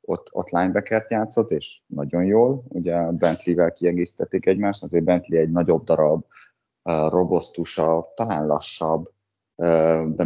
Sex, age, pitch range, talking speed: male, 20-39, 80-95 Hz, 130 wpm